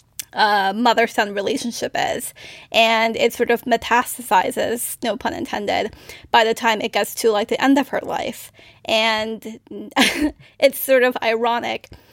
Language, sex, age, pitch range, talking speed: English, female, 10-29, 215-250 Hz, 145 wpm